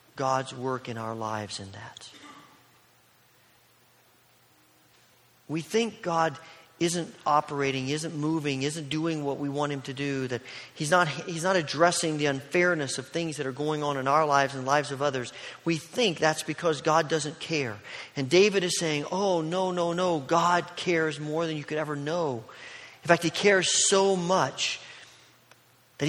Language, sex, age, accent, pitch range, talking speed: English, male, 40-59, American, 130-165 Hz, 170 wpm